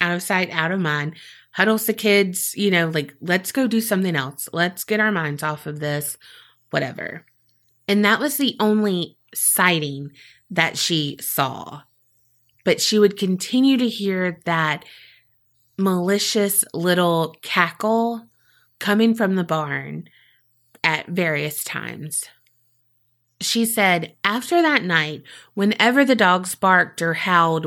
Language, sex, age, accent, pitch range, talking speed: English, female, 30-49, American, 150-205 Hz, 135 wpm